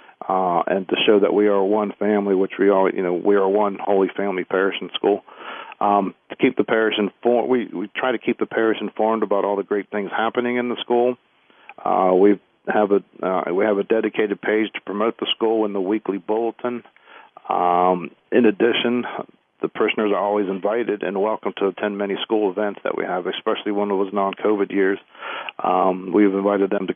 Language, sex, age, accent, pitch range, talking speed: English, male, 50-69, American, 100-110 Hz, 205 wpm